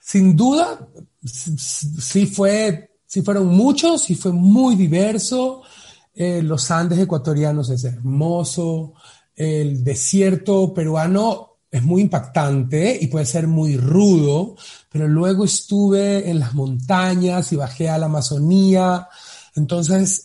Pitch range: 145-185 Hz